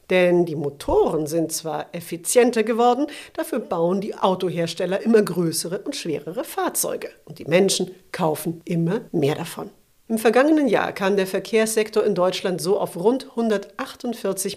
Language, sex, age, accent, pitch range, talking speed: German, female, 50-69, German, 175-230 Hz, 145 wpm